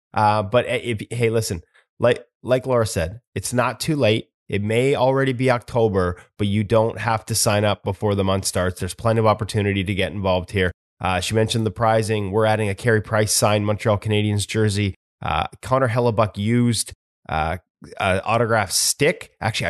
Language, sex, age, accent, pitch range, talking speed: English, male, 20-39, American, 100-125 Hz, 185 wpm